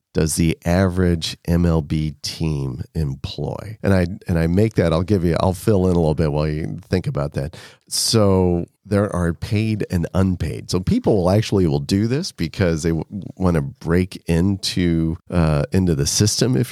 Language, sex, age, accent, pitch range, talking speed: English, male, 40-59, American, 80-105 Hz, 185 wpm